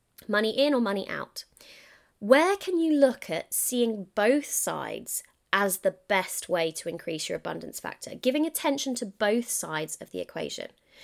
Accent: British